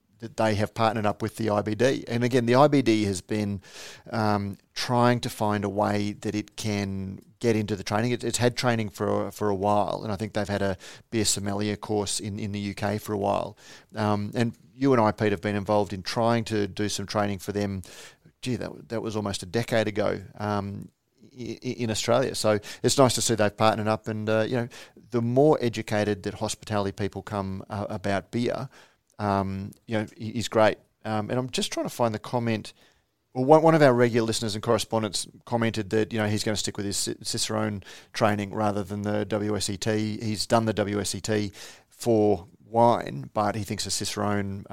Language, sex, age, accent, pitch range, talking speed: English, male, 40-59, Australian, 105-120 Hz, 200 wpm